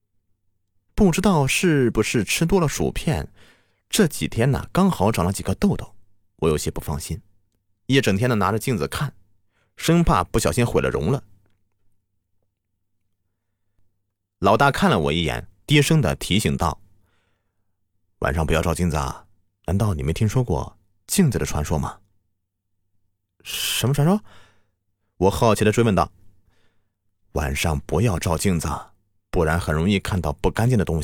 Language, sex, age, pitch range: Chinese, male, 30-49, 90-105 Hz